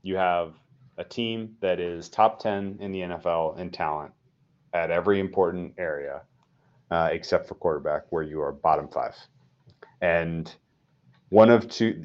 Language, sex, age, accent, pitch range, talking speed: English, male, 30-49, American, 85-110 Hz, 150 wpm